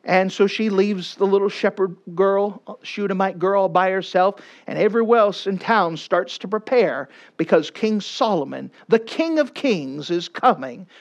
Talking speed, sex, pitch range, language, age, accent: 165 wpm, male, 180-235 Hz, English, 50-69, American